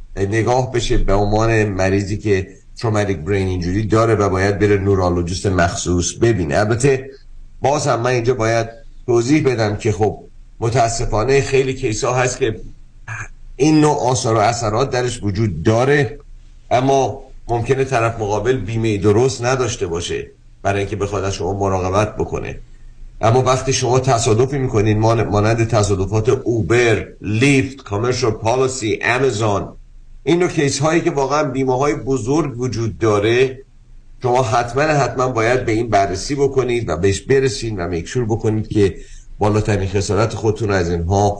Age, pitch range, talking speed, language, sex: 50-69, 100-130 Hz, 140 wpm, Persian, male